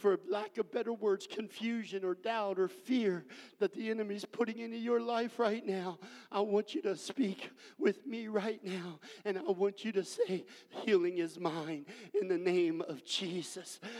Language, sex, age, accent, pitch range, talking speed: English, male, 50-69, American, 210-275 Hz, 185 wpm